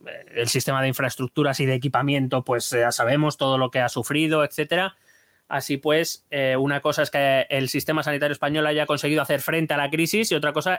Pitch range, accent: 130-150 Hz, Spanish